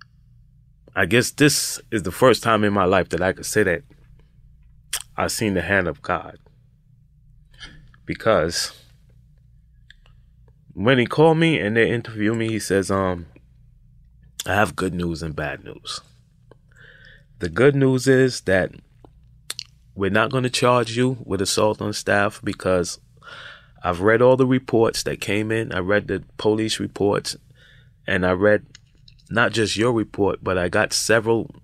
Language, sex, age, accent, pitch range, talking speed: English, male, 20-39, American, 95-130 Hz, 150 wpm